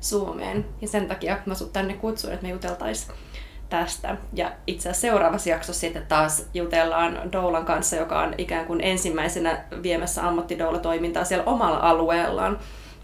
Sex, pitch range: female, 165-200 Hz